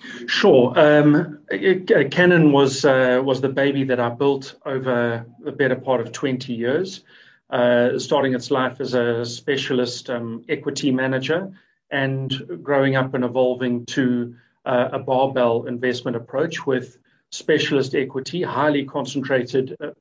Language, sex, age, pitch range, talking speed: English, male, 40-59, 130-145 Hz, 140 wpm